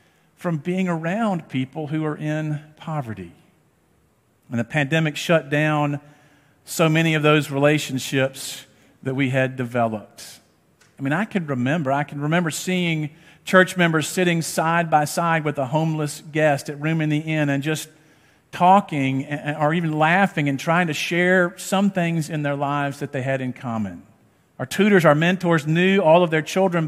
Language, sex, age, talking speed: English, male, 50-69, 165 wpm